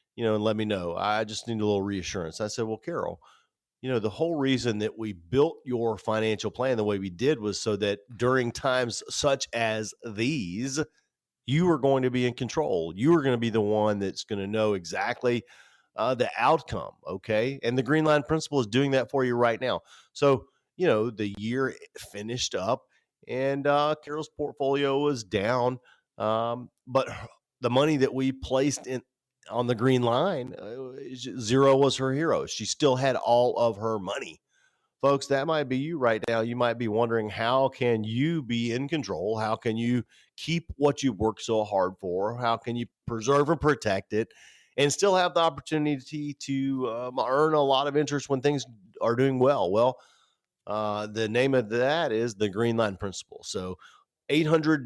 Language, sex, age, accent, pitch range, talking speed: English, male, 40-59, American, 110-135 Hz, 190 wpm